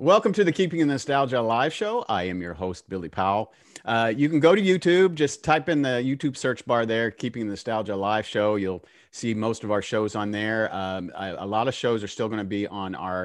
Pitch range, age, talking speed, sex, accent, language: 95-125 Hz, 40-59, 245 wpm, male, American, English